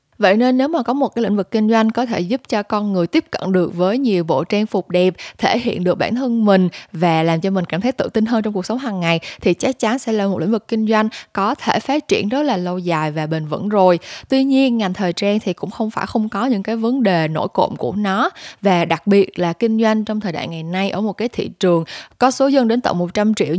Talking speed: 280 wpm